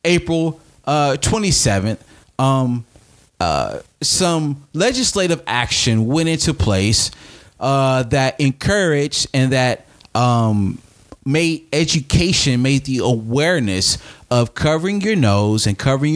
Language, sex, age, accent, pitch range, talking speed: English, male, 30-49, American, 110-150 Hz, 105 wpm